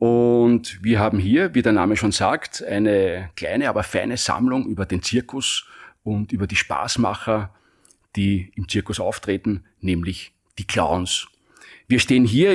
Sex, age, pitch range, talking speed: male, 40-59, 100-120 Hz, 150 wpm